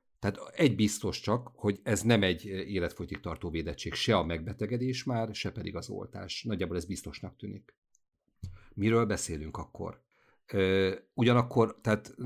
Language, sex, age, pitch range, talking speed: Hungarian, male, 50-69, 85-105 Hz, 130 wpm